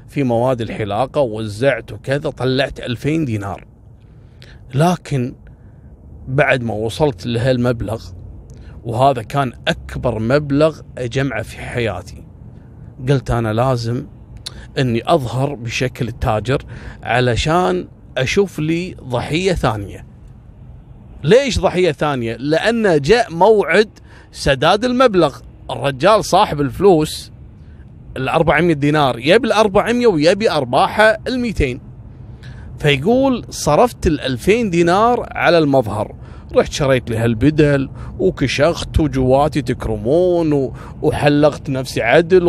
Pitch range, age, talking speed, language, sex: 120-155 Hz, 30-49, 100 wpm, Arabic, male